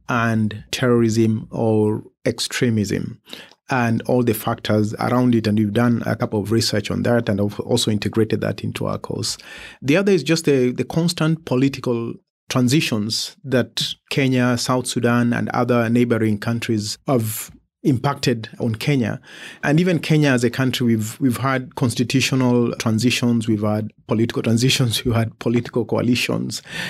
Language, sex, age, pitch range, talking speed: English, male, 30-49, 110-125 Hz, 145 wpm